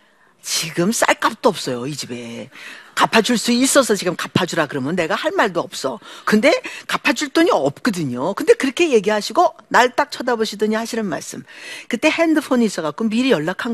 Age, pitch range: 50-69, 175-275 Hz